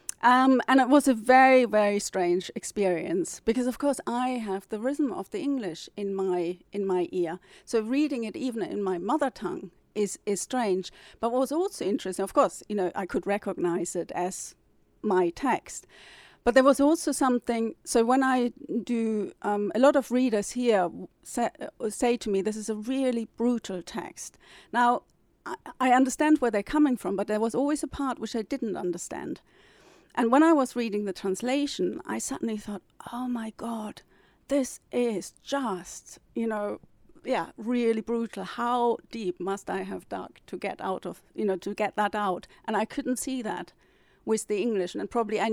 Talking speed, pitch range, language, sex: 190 wpm, 200-255 Hz, English, female